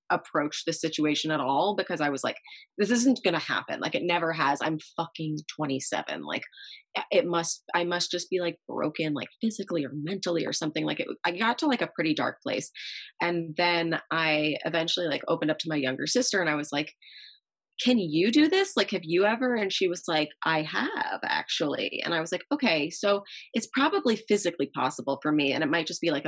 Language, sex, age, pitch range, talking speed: English, female, 20-39, 150-185 Hz, 210 wpm